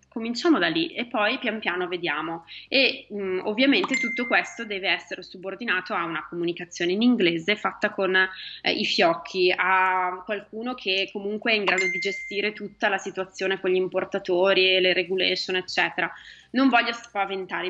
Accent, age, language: native, 20-39, Italian